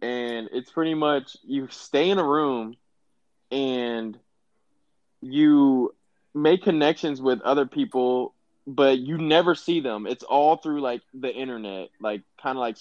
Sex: male